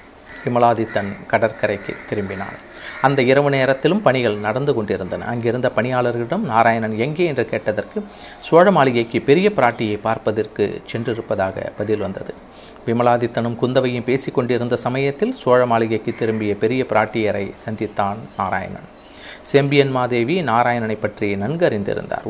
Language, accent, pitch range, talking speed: Tamil, native, 110-145 Hz, 110 wpm